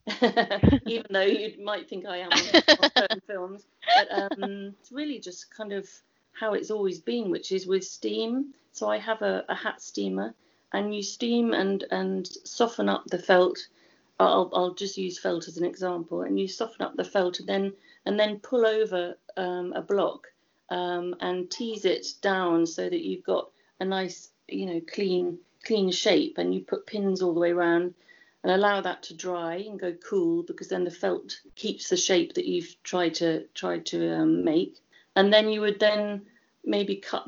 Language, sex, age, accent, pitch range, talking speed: English, female, 40-59, British, 180-210 Hz, 190 wpm